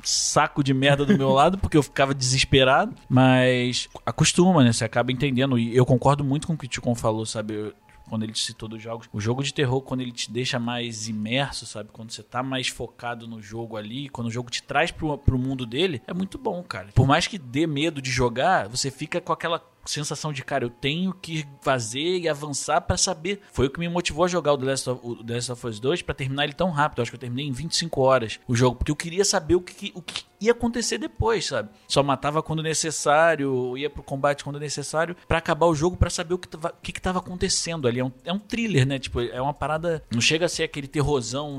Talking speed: 245 wpm